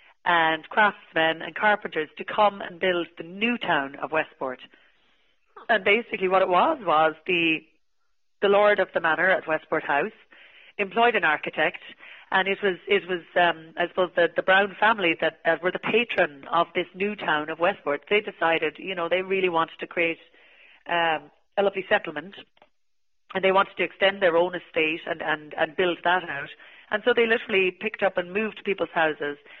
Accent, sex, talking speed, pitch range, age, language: Irish, female, 185 wpm, 160-190 Hz, 30-49, English